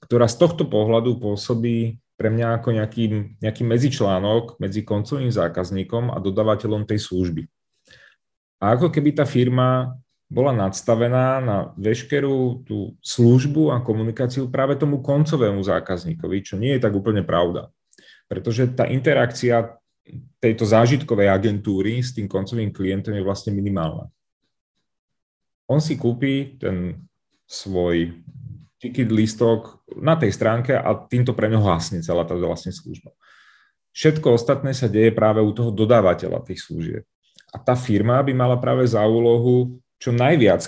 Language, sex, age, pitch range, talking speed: Czech, male, 30-49, 100-125 Hz, 135 wpm